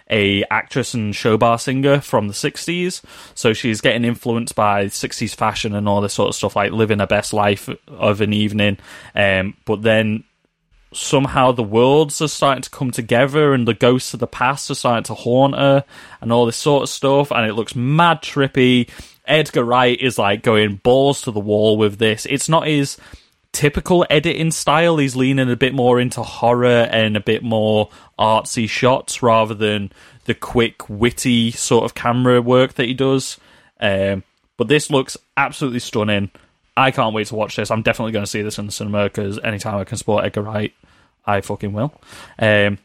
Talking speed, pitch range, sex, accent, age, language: 190 wpm, 105-130 Hz, male, British, 20-39, English